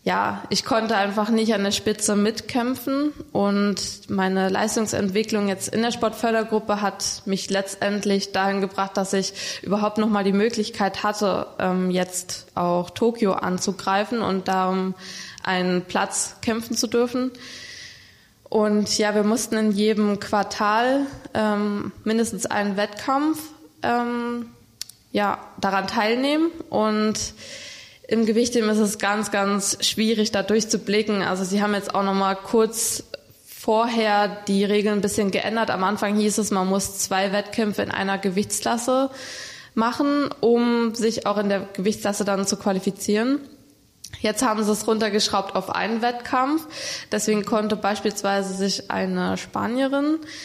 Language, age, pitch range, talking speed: German, 20-39, 200-225 Hz, 135 wpm